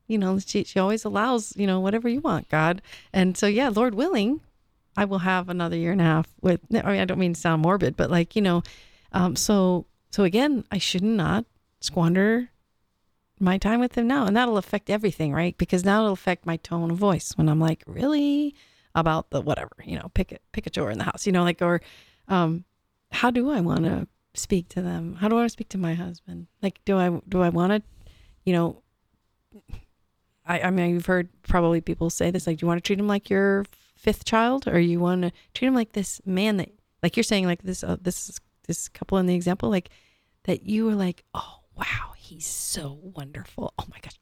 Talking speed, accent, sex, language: 220 wpm, American, female, English